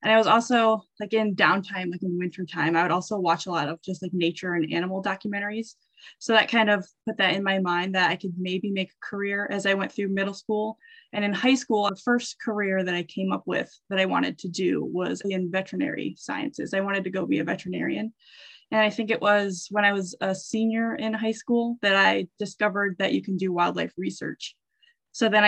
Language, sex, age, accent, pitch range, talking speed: English, female, 10-29, American, 185-220 Hz, 230 wpm